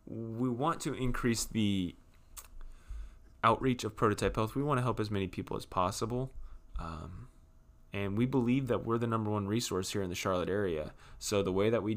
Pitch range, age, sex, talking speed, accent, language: 95-115 Hz, 20-39, male, 190 wpm, American, English